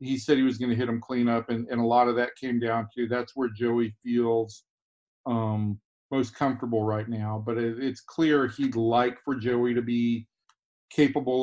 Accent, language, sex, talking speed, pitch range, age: American, English, male, 200 wpm, 115-135 Hz, 40-59